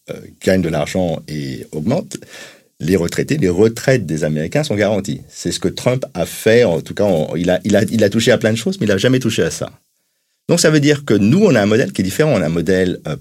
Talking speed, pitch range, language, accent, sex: 270 wpm, 90-140 Hz, French, French, male